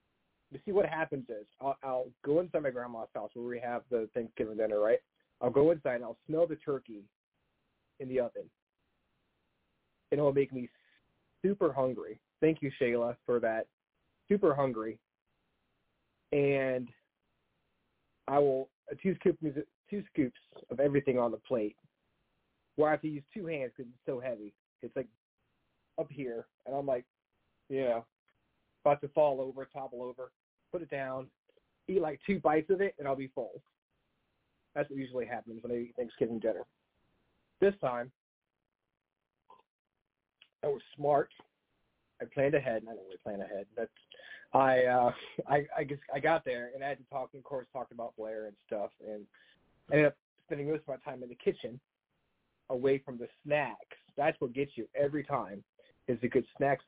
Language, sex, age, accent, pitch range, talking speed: English, male, 30-49, American, 120-150 Hz, 175 wpm